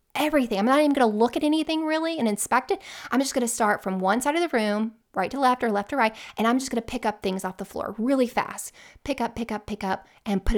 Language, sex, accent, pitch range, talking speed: English, female, American, 200-270 Hz, 295 wpm